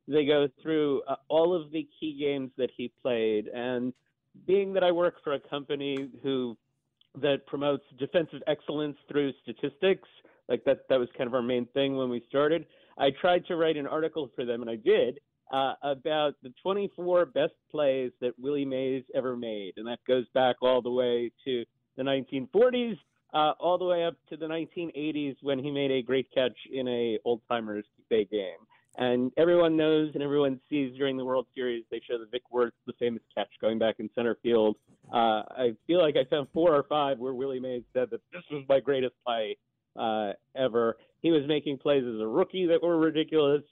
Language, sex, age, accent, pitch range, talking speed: English, male, 40-59, American, 125-155 Hz, 200 wpm